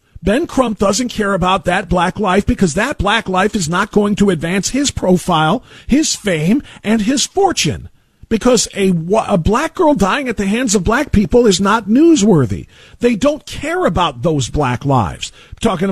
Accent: American